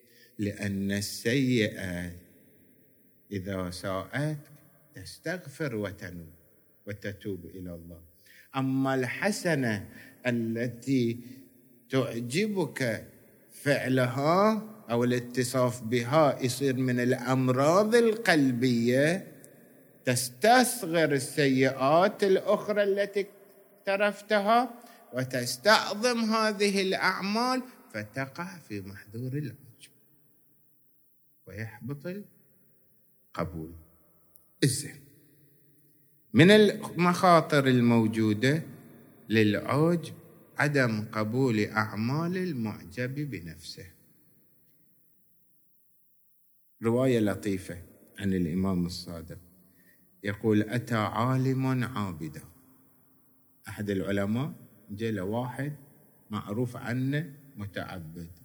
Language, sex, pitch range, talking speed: Arabic, male, 105-155 Hz, 65 wpm